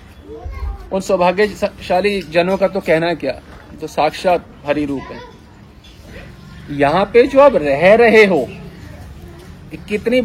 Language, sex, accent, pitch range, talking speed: Hindi, male, native, 175-245 Hz, 125 wpm